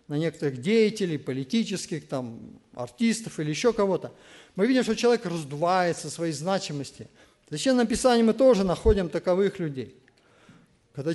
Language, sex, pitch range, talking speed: Russian, male, 160-230 Hz, 135 wpm